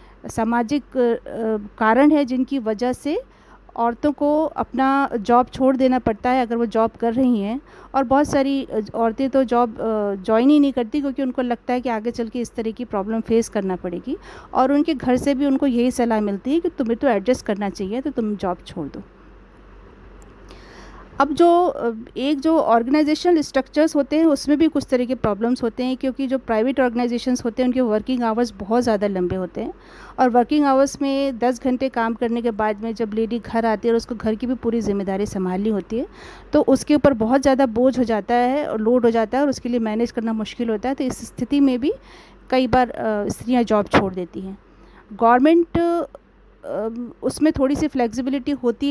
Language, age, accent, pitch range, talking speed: Hindi, 50-69, native, 225-275 Hz, 200 wpm